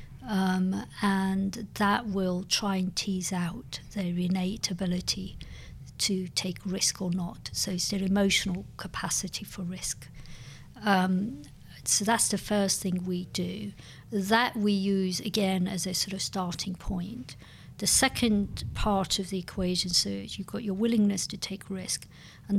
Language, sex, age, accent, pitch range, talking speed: English, female, 50-69, British, 180-200 Hz, 150 wpm